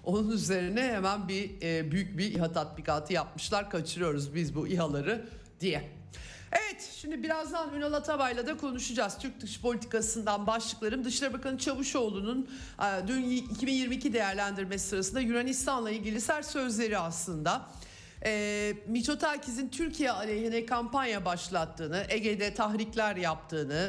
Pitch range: 180-245 Hz